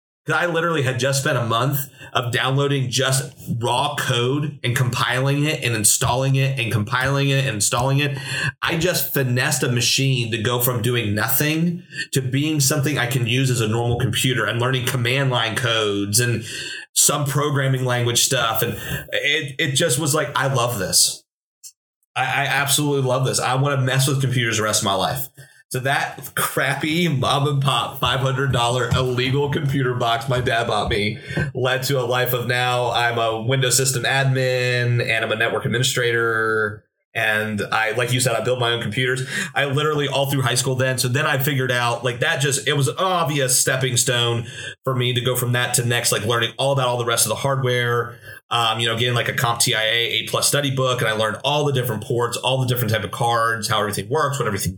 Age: 30-49